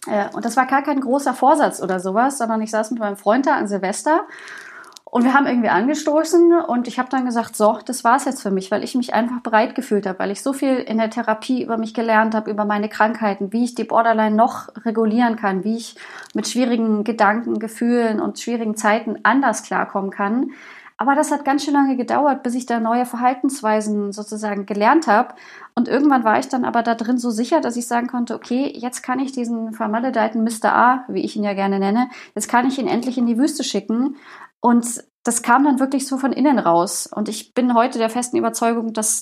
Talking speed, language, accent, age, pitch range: 220 wpm, German, German, 30-49, 215-260 Hz